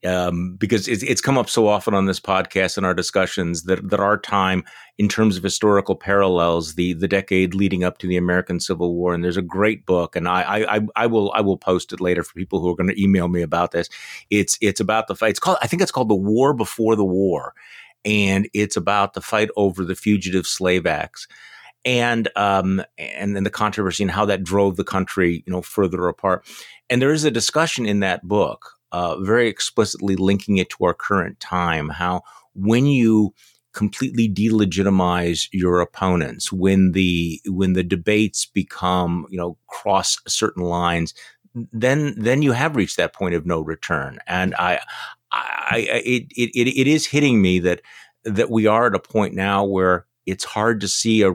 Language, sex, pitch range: English, male, 90-105 Hz